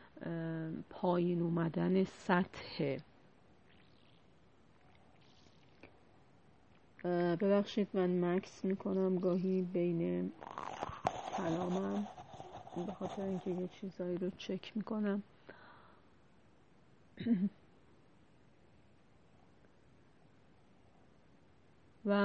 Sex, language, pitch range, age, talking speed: female, Persian, 175-200 Hz, 40-59, 50 wpm